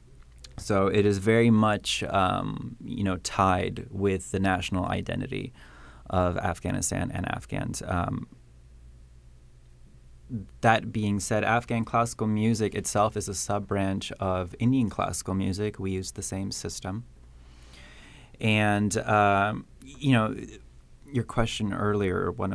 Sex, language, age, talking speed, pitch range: male, English, 20-39, 120 wpm, 90-110 Hz